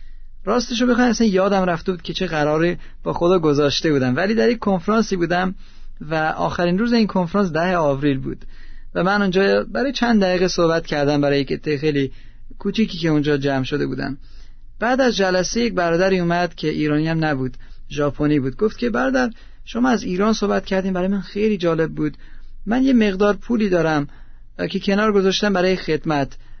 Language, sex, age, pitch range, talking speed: Persian, male, 40-59, 145-200 Hz, 175 wpm